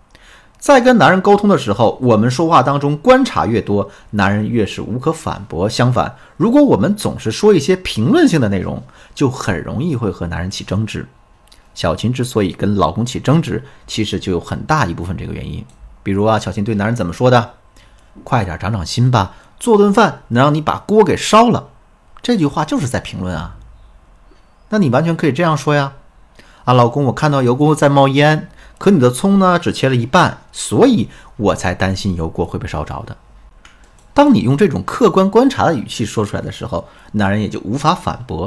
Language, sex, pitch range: Chinese, male, 100-155 Hz